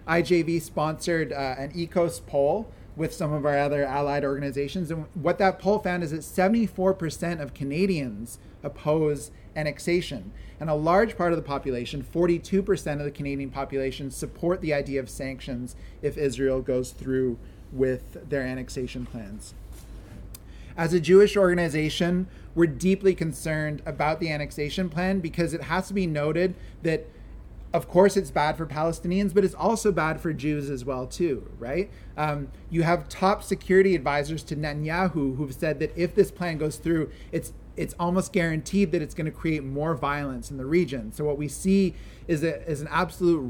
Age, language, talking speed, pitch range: 30-49, English, 170 wpm, 135-175 Hz